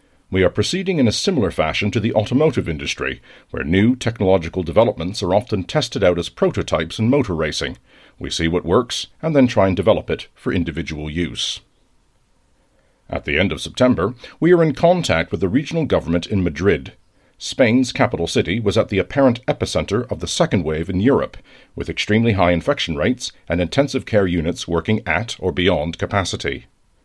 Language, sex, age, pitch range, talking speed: English, male, 50-69, 90-125 Hz, 180 wpm